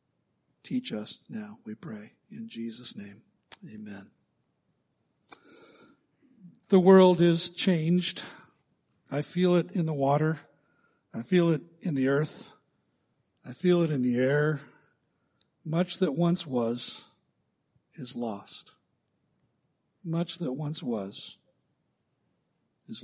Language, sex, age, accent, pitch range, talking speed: English, male, 60-79, American, 130-180 Hz, 110 wpm